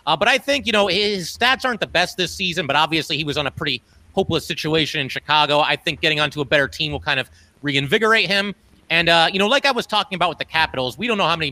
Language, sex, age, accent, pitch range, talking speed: English, male, 30-49, American, 120-160 Hz, 275 wpm